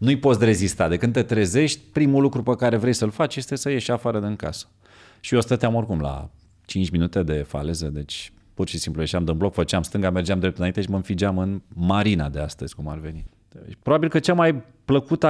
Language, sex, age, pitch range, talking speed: Romanian, male, 30-49, 95-135 Hz, 230 wpm